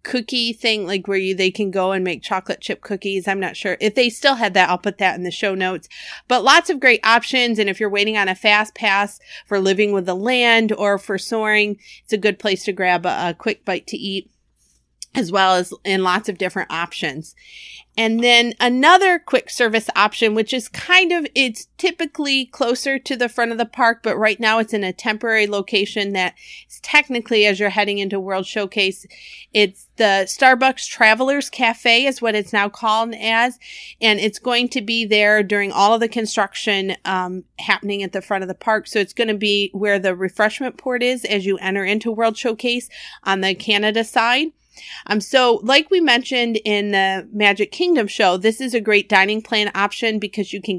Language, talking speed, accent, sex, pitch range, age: English, 205 wpm, American, female, 195-235 Hz, 30-49